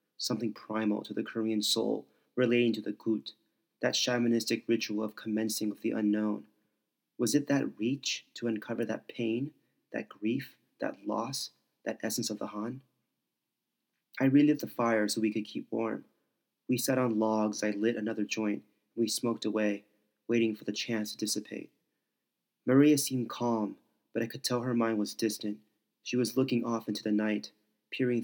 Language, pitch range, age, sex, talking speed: English, 105-120 Hz, 30-49, male, 170 wpm